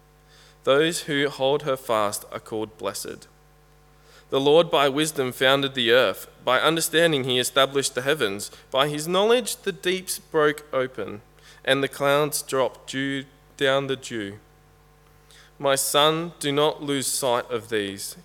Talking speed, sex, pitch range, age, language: 140 wpm, male, 125-150 Hz, 20-39, English